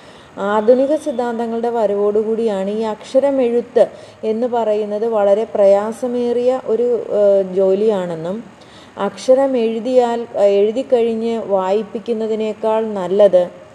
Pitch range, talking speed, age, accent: 200-230 Hz, 80 wpm, 30-49, native